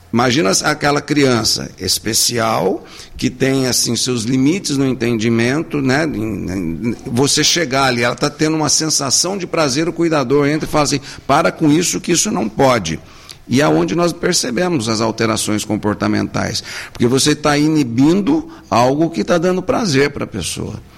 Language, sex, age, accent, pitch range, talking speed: English, male, 60-79, Brazilian, 110-150 Hz, 155 wpm